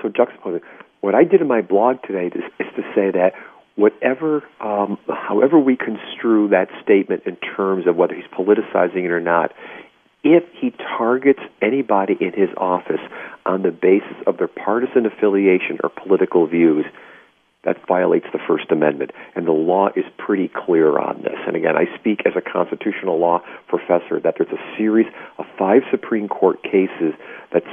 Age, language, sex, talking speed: 50-69, English, male, 170 wpm